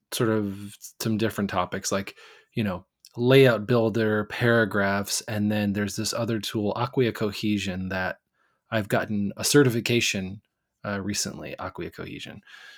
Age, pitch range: 20-39, 105-135 Hz